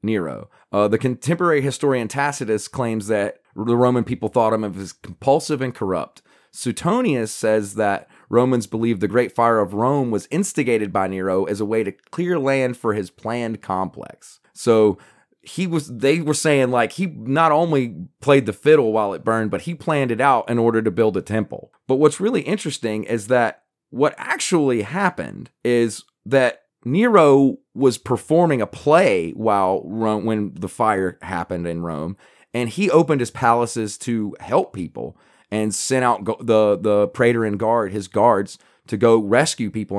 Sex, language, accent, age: male, English, American, 30-49